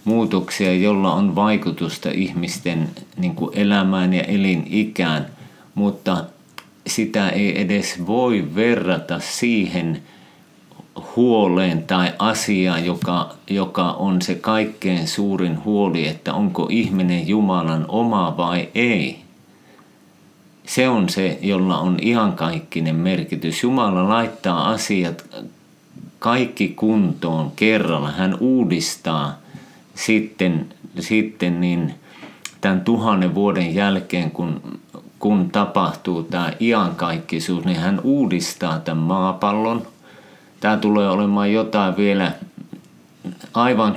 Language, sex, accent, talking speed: Finnish, male, native, 95 wpm